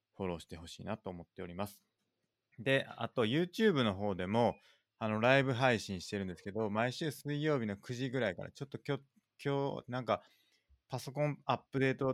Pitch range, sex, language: 95-120 Hz, male, Japanese